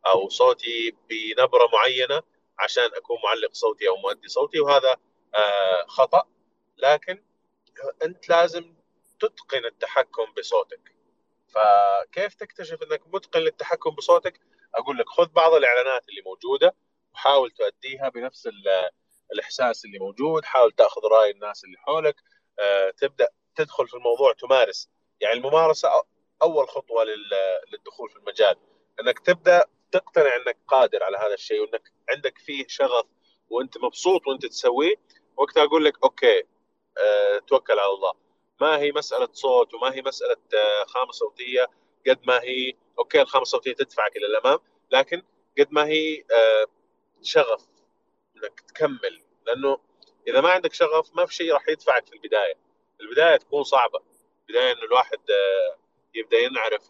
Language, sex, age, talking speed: Arabic, male, 30-49, 135 wpm